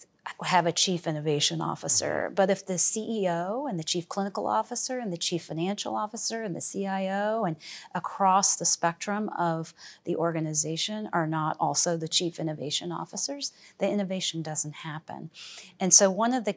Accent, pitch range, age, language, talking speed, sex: American, 160-190 Hz, 30-49, English, 165 wpm, female